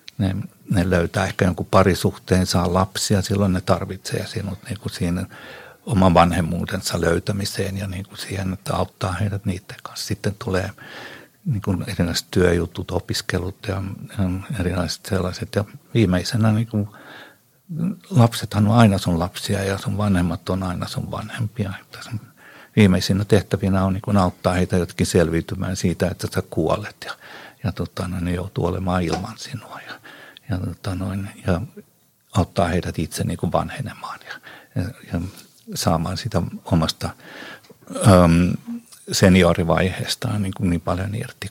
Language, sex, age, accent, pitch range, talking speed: Finnish, male, 60-79, native, 90-110 Hz, 125 wpm